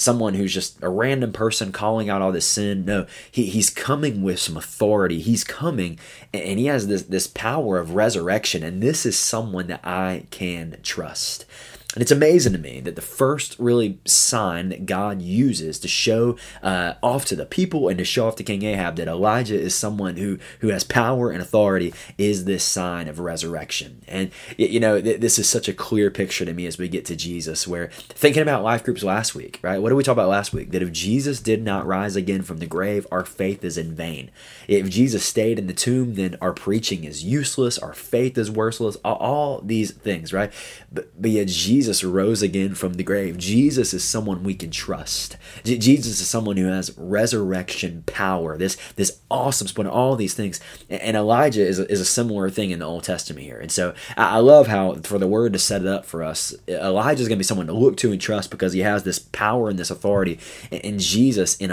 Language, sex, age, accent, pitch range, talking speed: English, male, 20-39, American, 90-110 Hz, 220 wpm